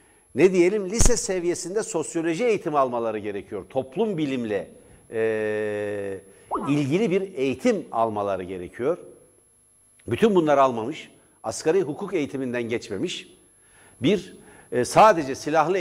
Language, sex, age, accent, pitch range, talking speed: Turkish, male, 60-79, native, 130-185 Hz, 105 wpm